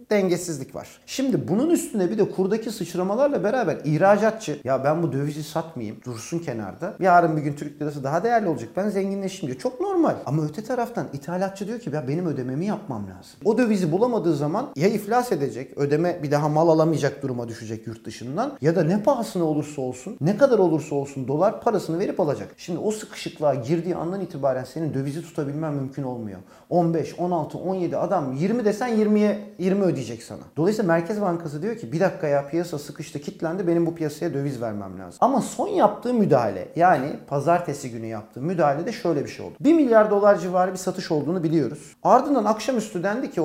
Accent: native